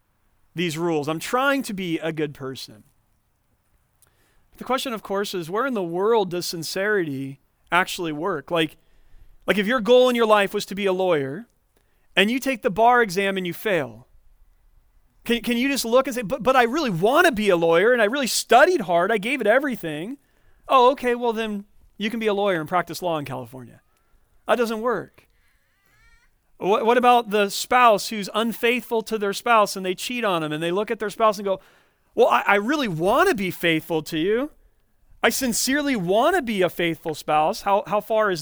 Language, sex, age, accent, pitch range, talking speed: English, male, 40-59, American, 165-230 Hz, 200 wpm